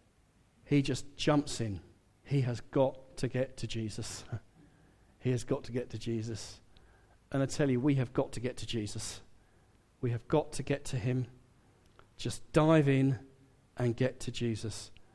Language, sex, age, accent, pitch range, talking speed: English, male, 40-59, British, 110-140 Hz, 170 wpm